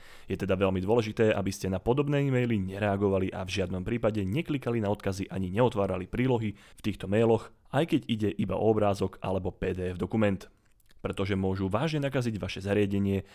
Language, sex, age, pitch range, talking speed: Slovak, male, 30-49, 95-115 Hz, 170 wpm